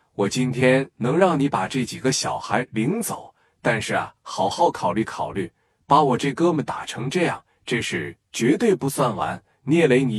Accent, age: native, 20-39